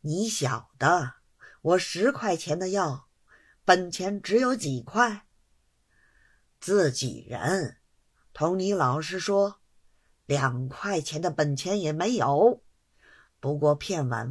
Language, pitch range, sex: Chinese, 135-200 Hz, female